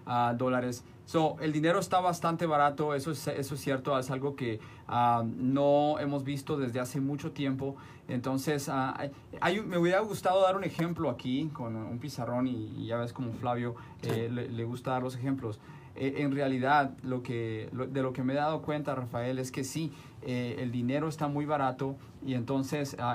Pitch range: 125-150 Hz